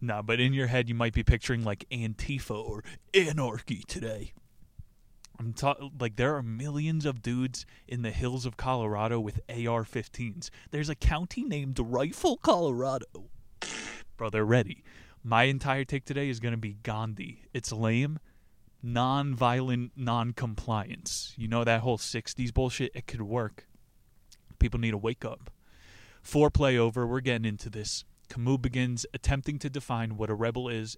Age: 20-39